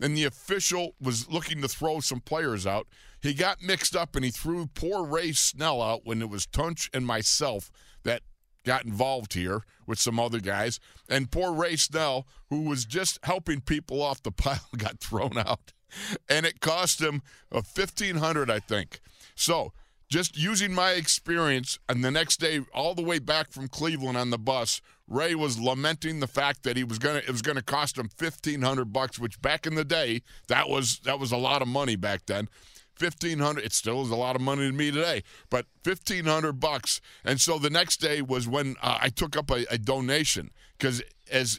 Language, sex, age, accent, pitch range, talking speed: English, male, 50-69, American, 120-155 Hz, 200 wpm